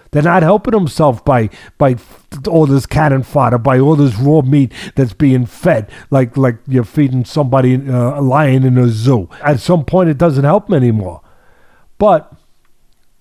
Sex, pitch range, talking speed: male, 120-155 Hz, 175 wpm